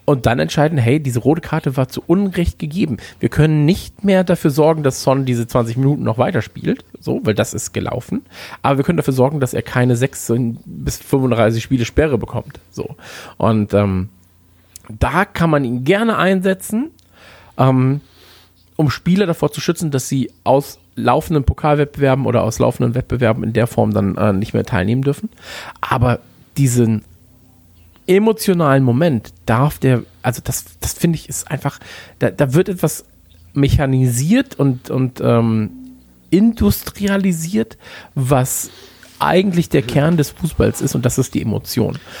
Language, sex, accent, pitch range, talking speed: German, male, German, 110-150 Hz, 155 wpm